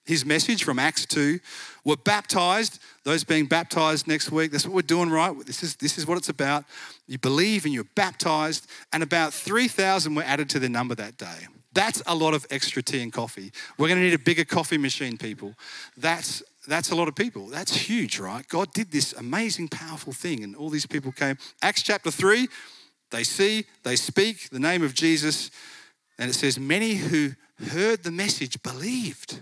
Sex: male